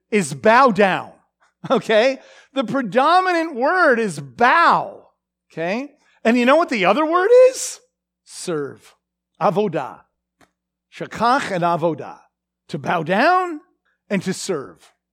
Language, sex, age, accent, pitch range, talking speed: English, male, 50-69, American, 200-280 Hz, 115 wpm